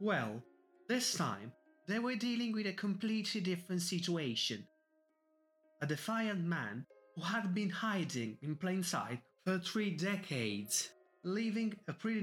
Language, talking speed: English, 130 wpm